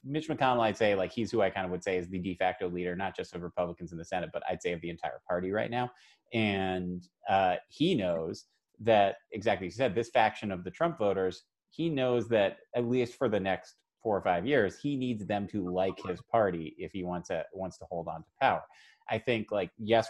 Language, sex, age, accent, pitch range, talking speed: English, male, 30-49, American, 90-120 Hz, 240 wpm